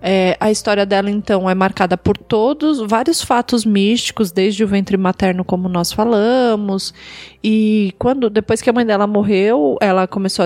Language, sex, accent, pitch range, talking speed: Portuguese, female, Brazilian, 200-250 Hz, 165 wpm